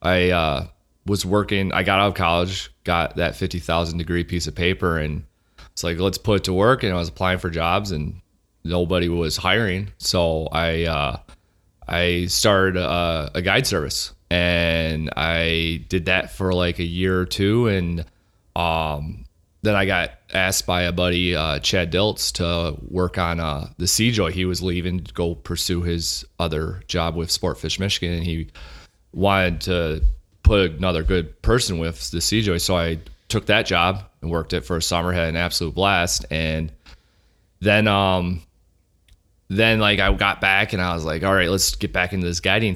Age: 30-49